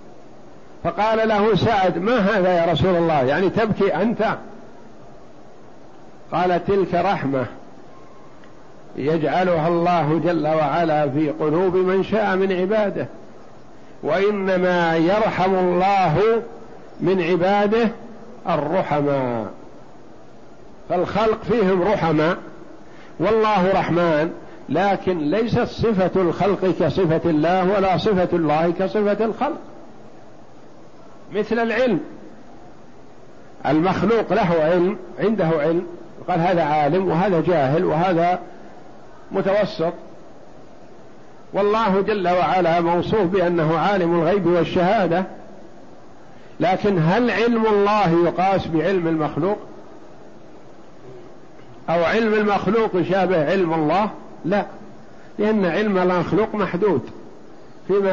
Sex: male